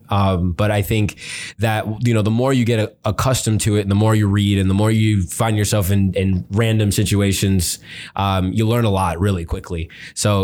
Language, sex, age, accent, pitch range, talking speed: English, male, 20-39, American, 100-115 Hz, 215 wpm